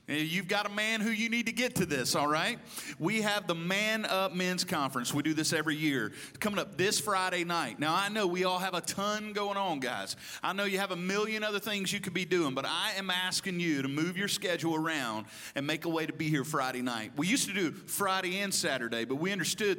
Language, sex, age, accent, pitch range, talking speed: English, male, 40-59, American, 140-190 Hz, 250 wpm